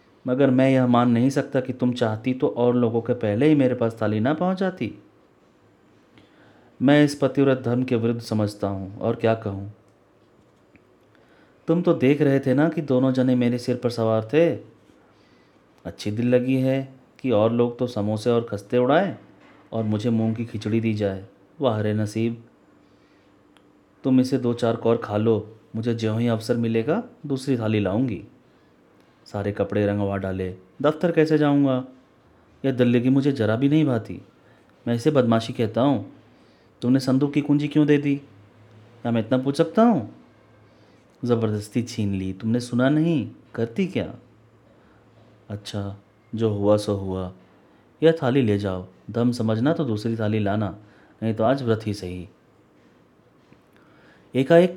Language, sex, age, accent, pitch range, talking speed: Hindi, male, 30-49, native, 105-130 Hz, 160 wpm